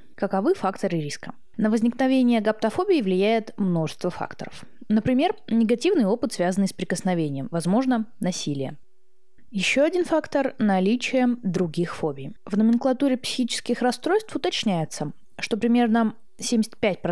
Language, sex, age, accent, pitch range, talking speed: Russian, female, 20-39, native, 175-240 Hz, 105 wpm